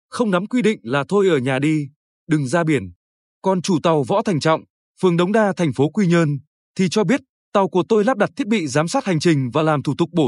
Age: 20-39